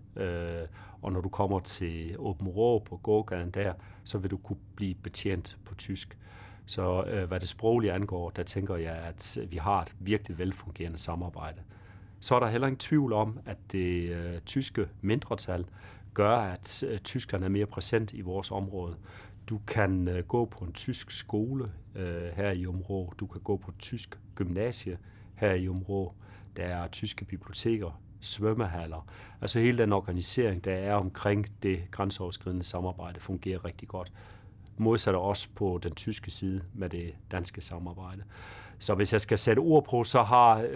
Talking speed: 170 wpm